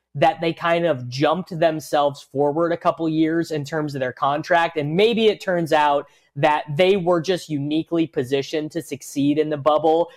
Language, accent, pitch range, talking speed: English, American, 145-175 Hz, 185 wpm